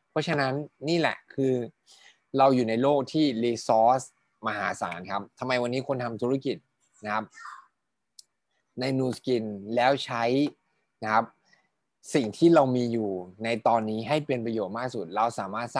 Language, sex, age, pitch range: Thai, male, 20-39, 110-130 Hz